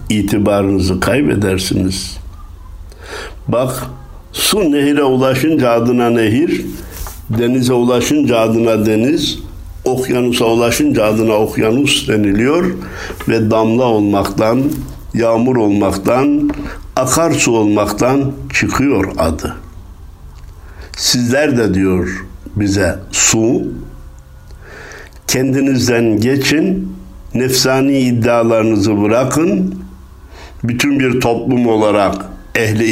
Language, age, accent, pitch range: Turkish, 60-79, native, 100-130 Hz